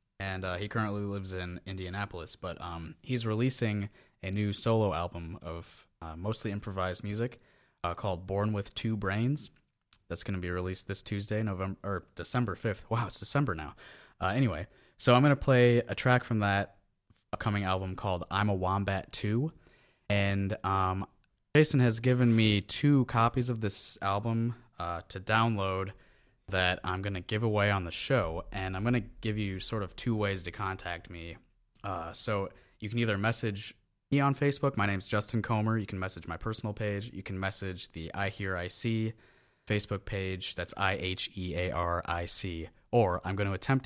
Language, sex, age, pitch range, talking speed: English, male, 20-39, 95-110 Hz, 180 wpm